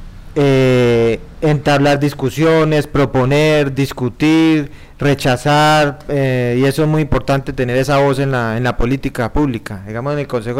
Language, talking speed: Spanish, 140 wpm